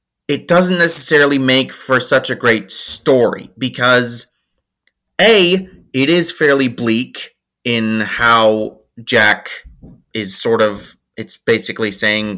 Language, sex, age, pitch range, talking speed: English, male, 30-49, 110-145 Hz, 115 wpm